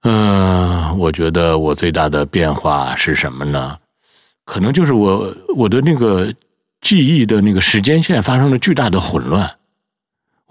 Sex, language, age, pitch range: male, Chinese, 60-79, 85-125 Hz